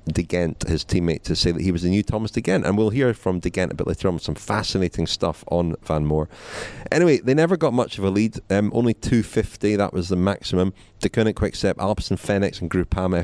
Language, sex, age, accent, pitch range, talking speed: English, male, 30-49, British, 90-105 Hz, 240 wpm